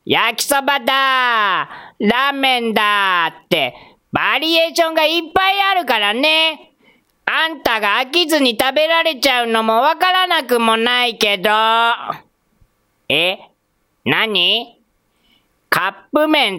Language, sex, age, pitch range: Japanese, female, 40-59, 240-370 Hz